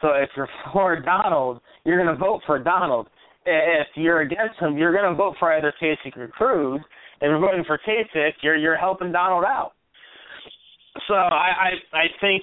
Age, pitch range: 30-49, 155-210 Hz